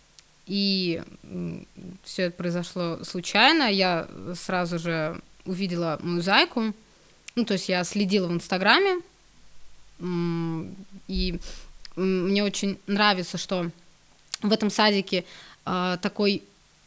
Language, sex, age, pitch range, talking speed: Russian, female, 20-39, 175-210 Hz, 95 wpm